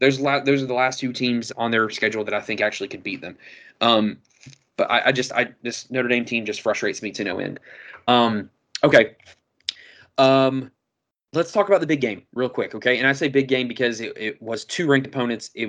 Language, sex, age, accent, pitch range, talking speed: English, male, 20-39, American, 120-145 Hz, 220 wpm